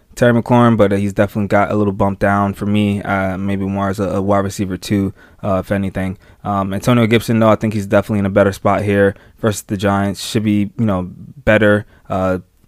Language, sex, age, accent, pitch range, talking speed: English, male, 20-39, American, 95-105 Hz, 220 wpm